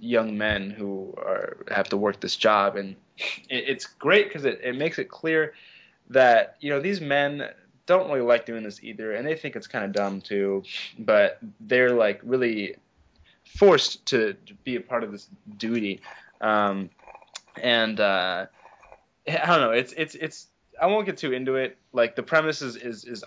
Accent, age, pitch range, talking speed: American, 20-39, 100-145 Hz, 185 wpm